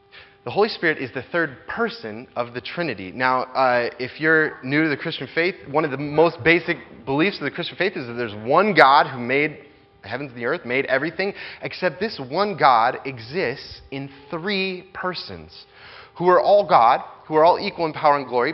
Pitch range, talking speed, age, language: 130-180 Hz, 205 wpm, 30-49, English